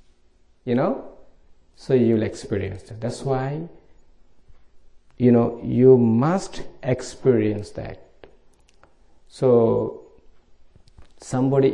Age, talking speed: 50-69, 80 wpm